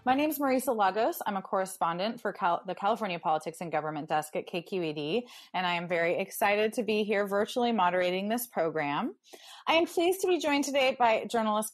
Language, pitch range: English, 185-240 Hz